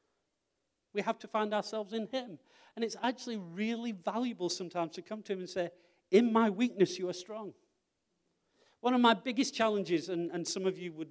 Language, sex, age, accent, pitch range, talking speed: English, male, 40-59, British, 130-175 Hz, 195 wpm